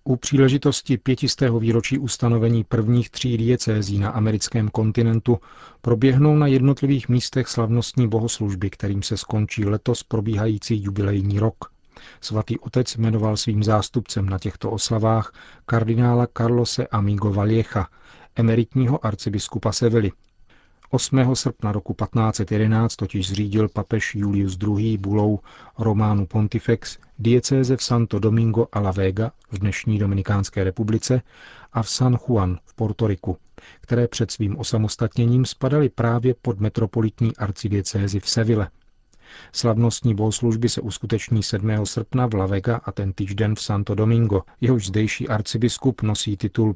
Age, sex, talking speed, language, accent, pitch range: 40-59, male, 125 wpm, Czech, native, 105-120 Hz